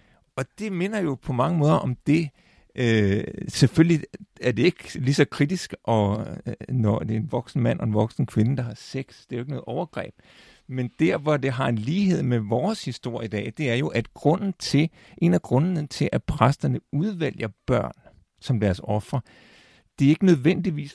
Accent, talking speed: native, 200 wpm